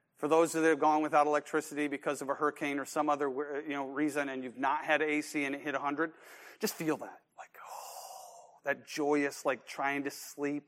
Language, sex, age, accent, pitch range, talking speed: English, male, 40-59, American, 150-205 Hz, 210 wpm